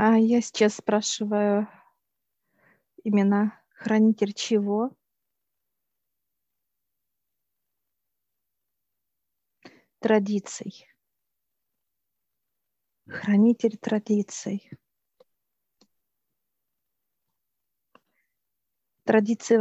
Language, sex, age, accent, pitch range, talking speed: Russian, female, 40-59, native, 205-225 Hz, 35 wpm